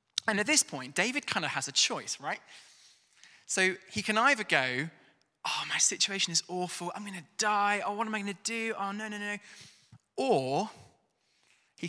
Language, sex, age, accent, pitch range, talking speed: English, male, 20-39, British, 140-200 Hz, 190 wpm